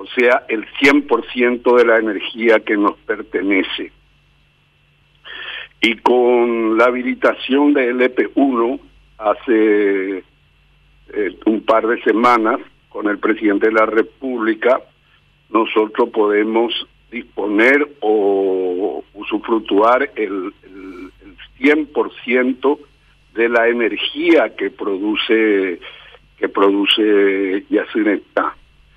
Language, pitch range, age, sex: Spanish, 105-140 Hz, 60-79, male